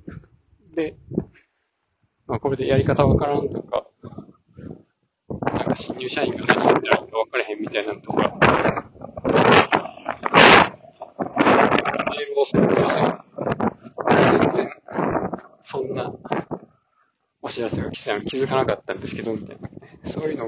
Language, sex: Japanese, male